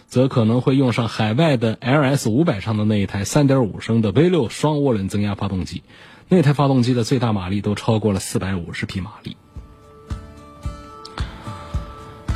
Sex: male